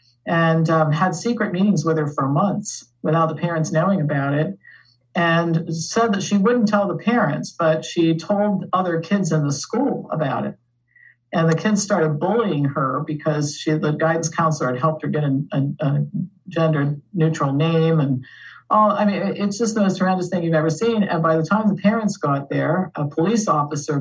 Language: English